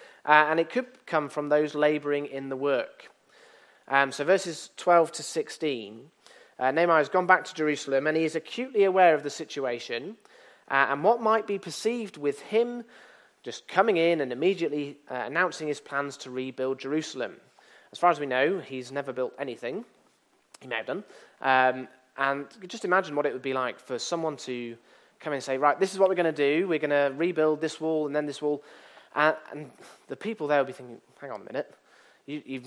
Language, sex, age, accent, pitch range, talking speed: English, male, 30-49, British, 140-185 Hz, 210 wpm